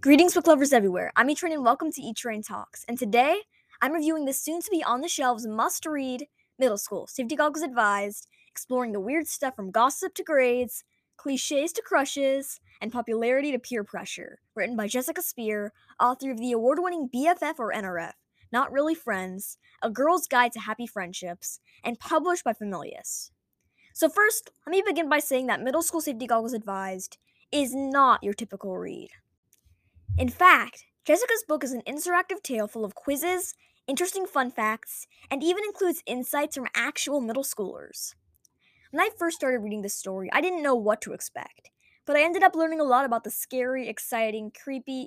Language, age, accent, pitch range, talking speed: English, 10-29, American, 225-320 Hz, 170 wpm